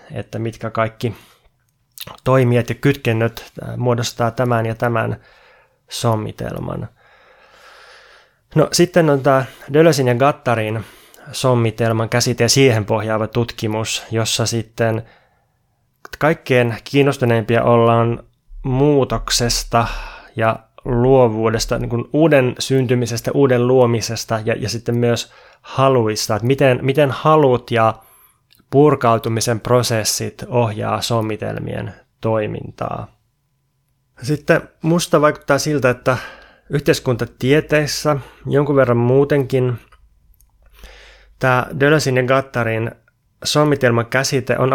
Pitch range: 115-135 Hz